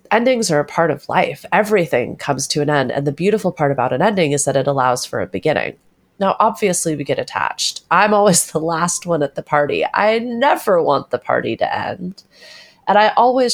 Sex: female